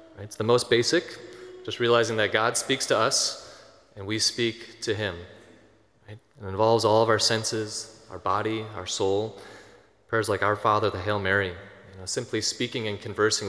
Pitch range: 100-115 Hz